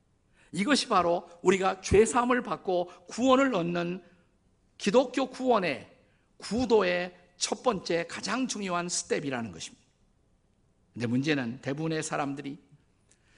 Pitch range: 150-220 Hz